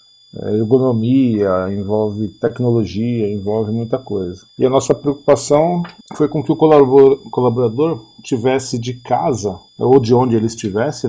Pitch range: 115-140 Hz